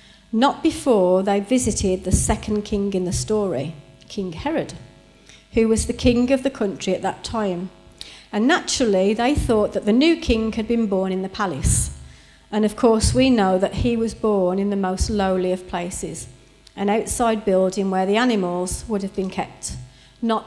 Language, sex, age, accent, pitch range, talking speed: English, female, 40-59, British, 185-230 Hz, 180 wpm